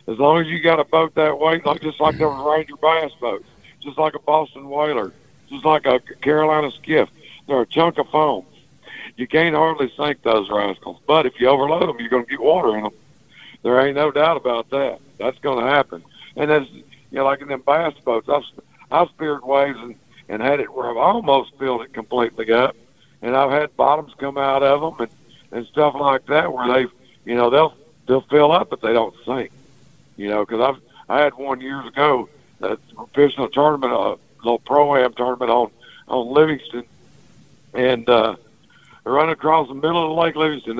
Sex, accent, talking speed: male, American, 205 wpm